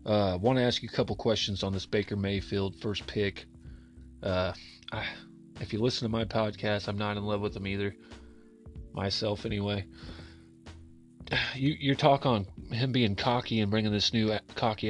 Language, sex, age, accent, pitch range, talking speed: English, male, 30-49, American, 100-115 Hz, 175 wpm